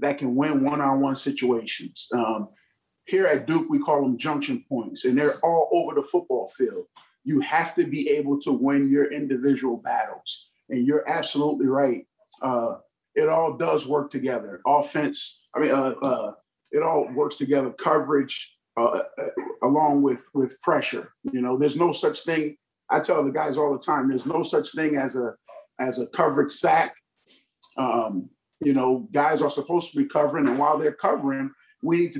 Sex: male